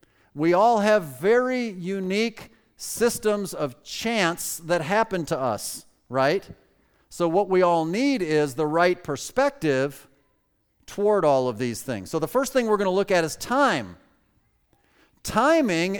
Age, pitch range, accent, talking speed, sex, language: 40-59, 155-215 Hz, American, 145 wpm, male, English